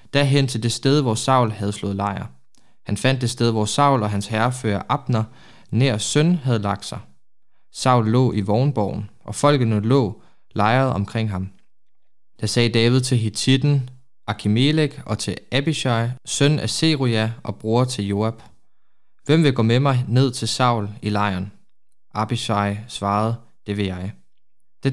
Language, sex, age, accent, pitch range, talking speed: Danish, male, 20-39, native, 105-130 Hz, 160 wpm